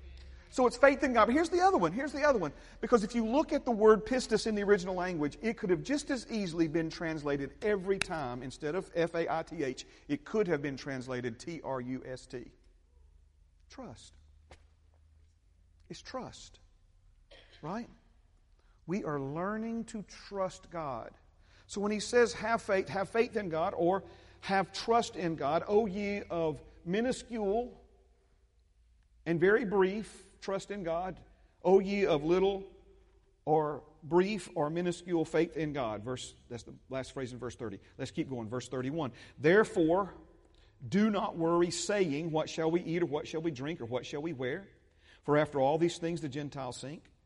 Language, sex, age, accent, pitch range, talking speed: English, male, 50-69, American, 130-195 Hz, 165 wpm